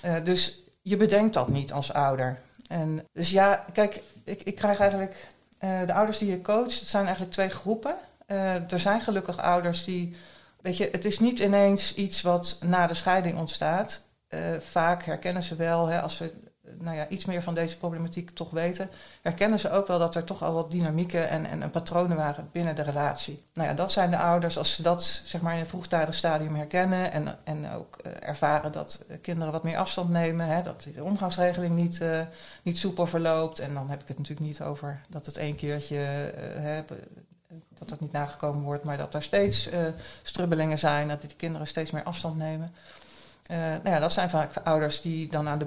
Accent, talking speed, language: Dutch, 210 wpm, Dutch